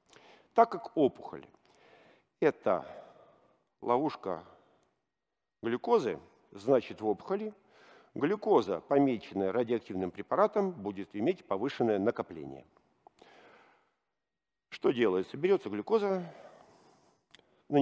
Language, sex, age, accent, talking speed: Russian, male, 50-69, native, 75 wpm